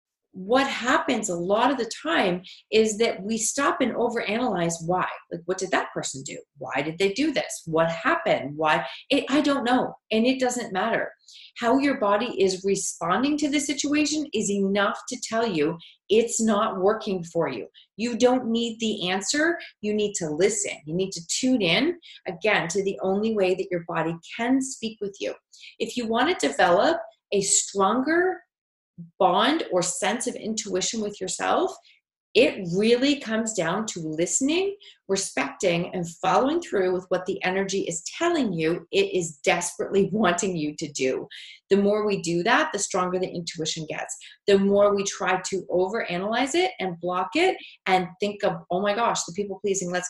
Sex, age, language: female, 30-49, English